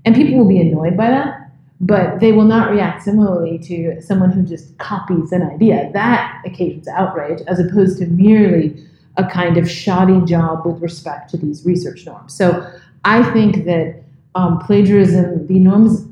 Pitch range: 170-210 Hz